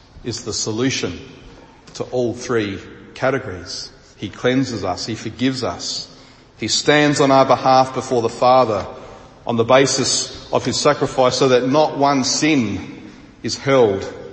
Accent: Australian